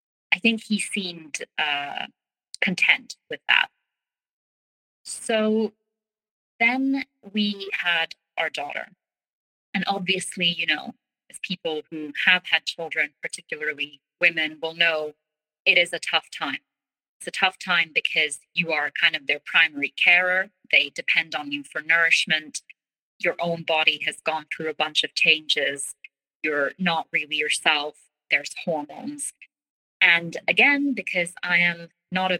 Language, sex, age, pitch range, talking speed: English, female, 30-49, 155-210 Hz, 135 wpm